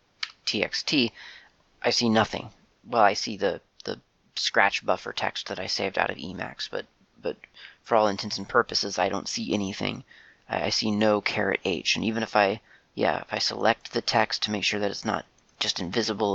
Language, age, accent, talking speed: English, 30-49, American, 190 wpm